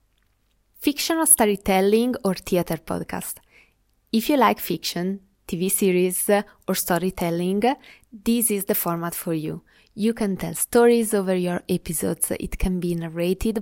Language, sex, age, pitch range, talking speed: English, female, 20-39, 180-225 Hz, 130 wpm